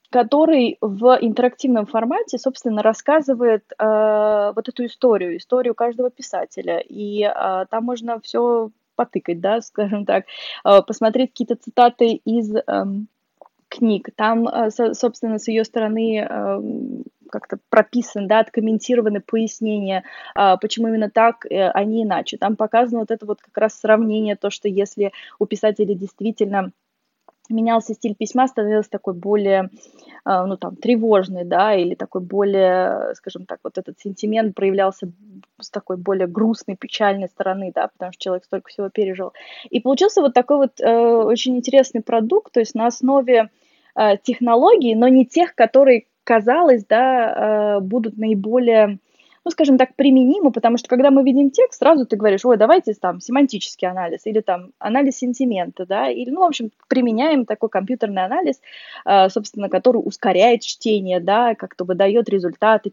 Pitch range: 205-250 Hz